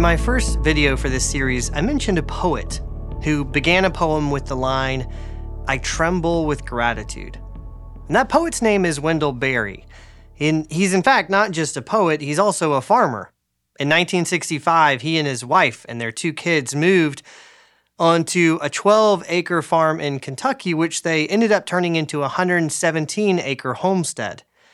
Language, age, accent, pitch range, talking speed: English, 30-49, American, 130-180 Hz, 165 wpm